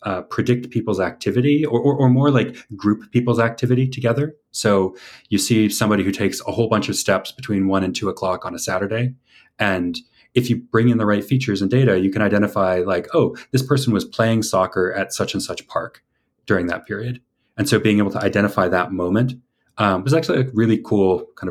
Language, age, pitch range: English, 30-49, 95-125 Hz